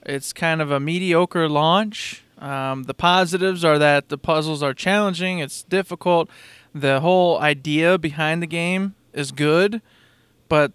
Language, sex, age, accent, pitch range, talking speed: English, male, 20-39, American, 140-170 Hz, 145 wpm